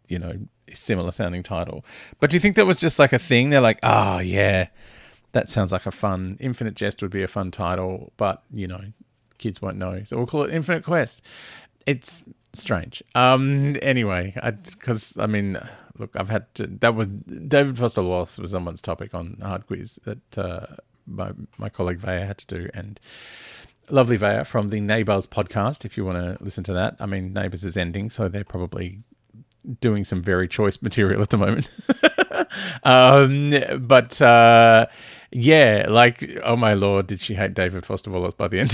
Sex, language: male, English